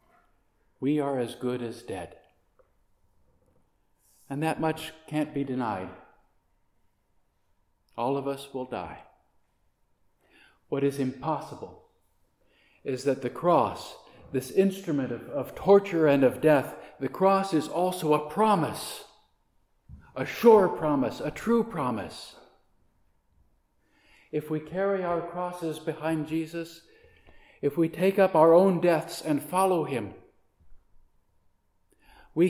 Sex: male